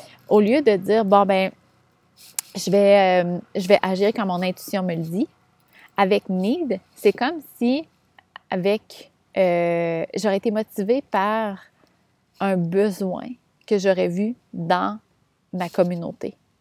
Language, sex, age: French, female, 30-49